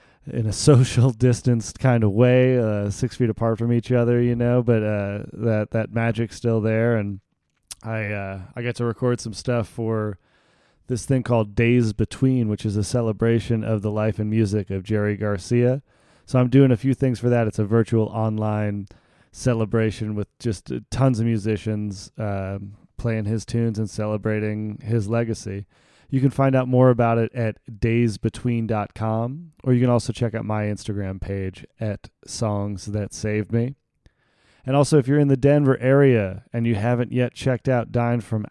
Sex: male